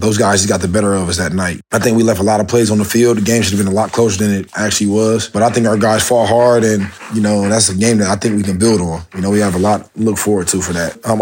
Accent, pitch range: American, 100-115 Hz